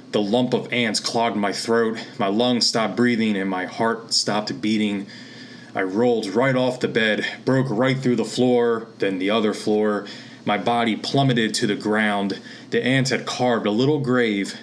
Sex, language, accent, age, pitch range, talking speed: male, English, American, 20-39, 100-120 Hz, 180 wpm